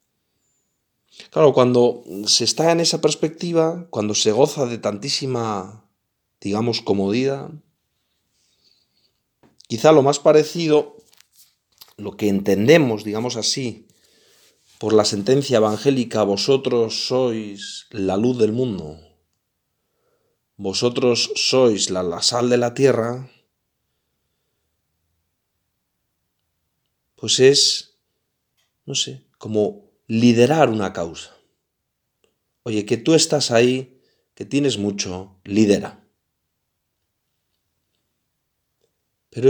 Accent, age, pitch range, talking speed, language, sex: Spanish, 40-59, 100-135 Hz, 90 wpm, Spanish, male